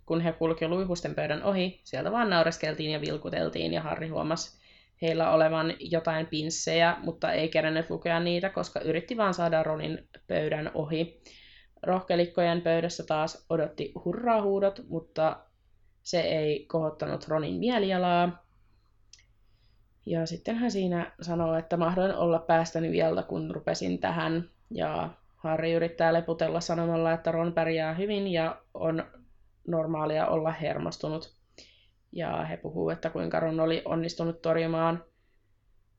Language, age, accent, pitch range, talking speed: Finnish, 20-39, native, 155-180 Hz, 130 wpm